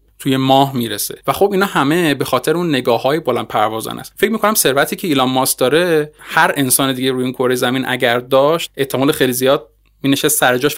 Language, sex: Persian, male